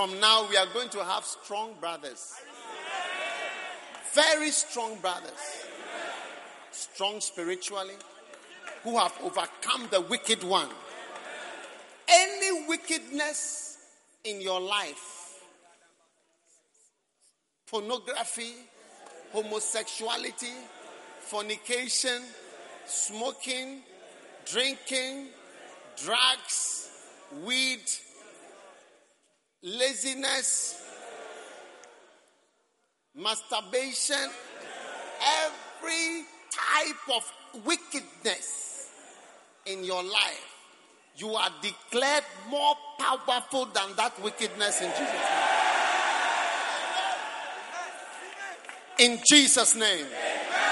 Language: English